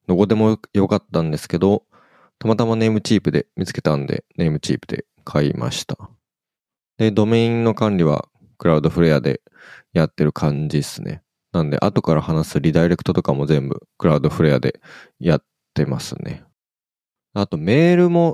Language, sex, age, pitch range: Japanese, male, 20-39, 75-115 Hz